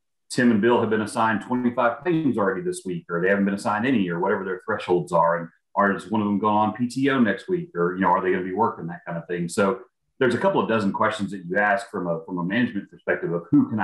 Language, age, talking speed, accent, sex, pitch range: English, 30-49, 275 wpm, American, male, 90-110 Hz